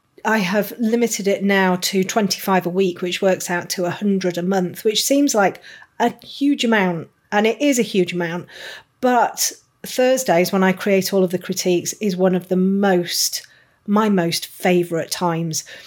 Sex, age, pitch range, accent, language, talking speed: female, 40-59, 180-220 Hz, British, English, 175 wpm